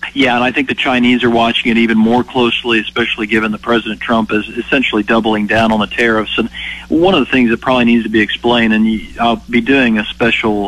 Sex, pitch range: male, 110-120 Hz